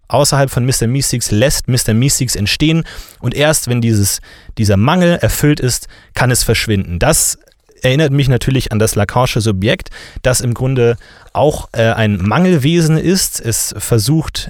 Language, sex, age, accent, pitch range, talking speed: German, male, 30-49, German, 110-135 Hz, 155 wpm